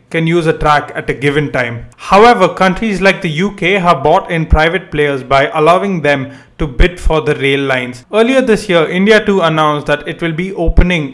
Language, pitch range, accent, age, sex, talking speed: English, 150-190 Hz, Indian, 30-49, male, 205 wpm